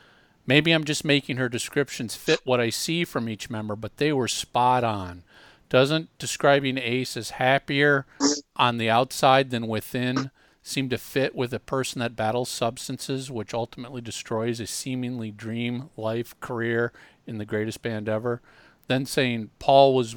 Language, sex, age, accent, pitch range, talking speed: English, male, 50-69, American, 115-135 Hz, 160 wpm